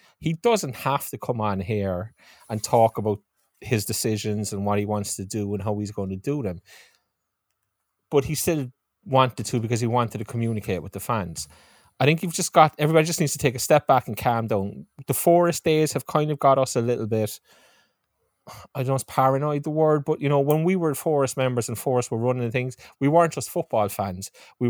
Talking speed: 220 wpm